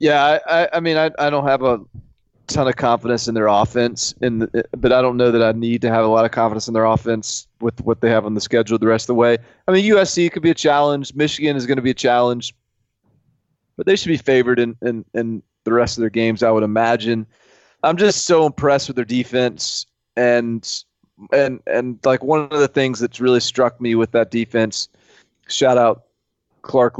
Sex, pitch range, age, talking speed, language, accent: male, 115-130 Hz, 30-49, 225 wpm, English, American